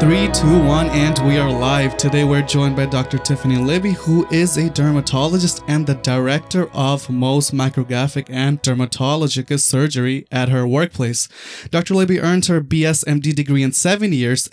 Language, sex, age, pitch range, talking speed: English, male, 20-39, 130-155 Hz, 160 wpm